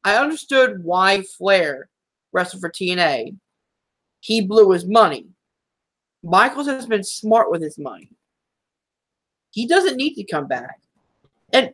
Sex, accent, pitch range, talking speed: male, American, 195-285 Hz, 130 wpm